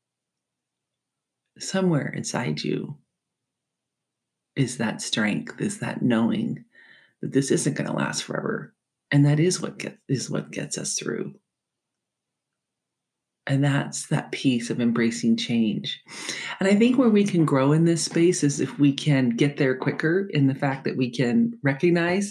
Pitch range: 125-175 Hz